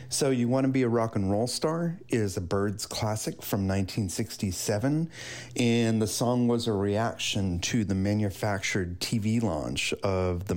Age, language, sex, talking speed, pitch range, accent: 30-49, English, male, 165 wpm, 100-125 Hz, American